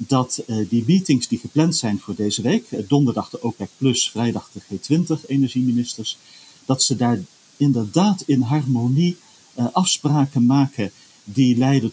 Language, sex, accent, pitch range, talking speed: Dutch, male, Dutch, 110-150 Hz, 150 wpm